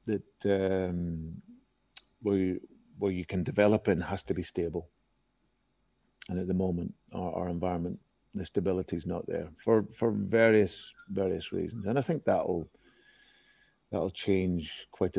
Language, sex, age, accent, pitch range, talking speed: English, male, 40-59, British, 90-100 Hz, 145 wpm